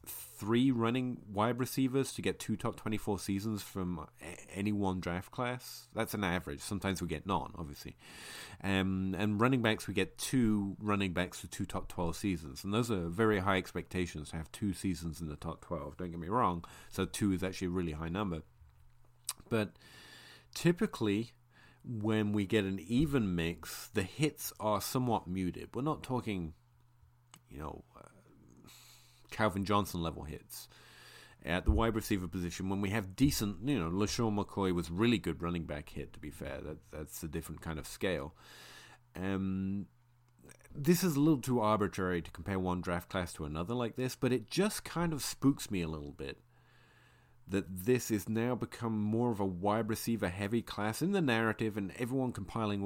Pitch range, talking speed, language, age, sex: 90-115 Hz, 180 wpm, English, 30-49, male